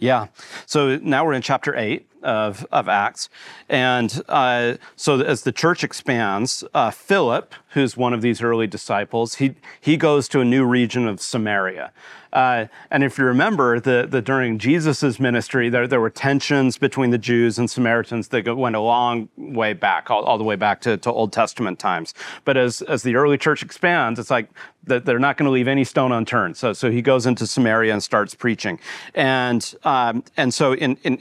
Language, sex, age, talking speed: English, male, 40-59, 195 wpm